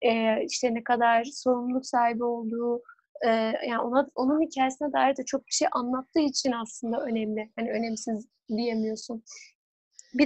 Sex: female